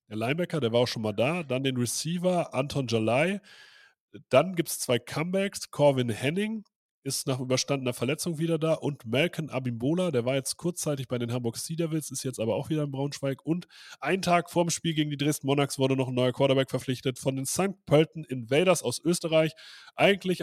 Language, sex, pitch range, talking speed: German, male, 120-165 Hz, 205 wpm